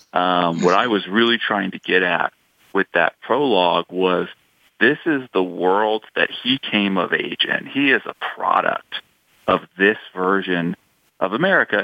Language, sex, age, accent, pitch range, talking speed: English, male, 40-59, American, 90-105 Hz, 160 wpm